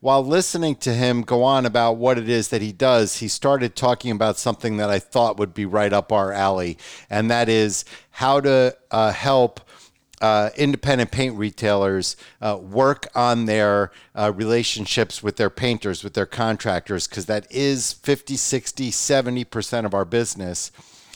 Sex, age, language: male, 50-69, English